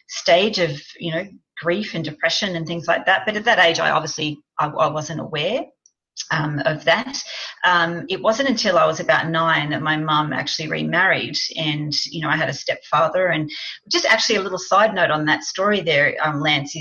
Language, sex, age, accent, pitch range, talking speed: English, female, 40-59, Australian, 150-195 Hz, 205 wpm